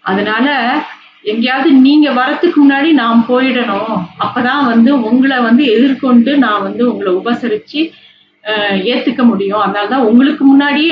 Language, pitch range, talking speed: Tamil, 215-280 Hz, 120 wpm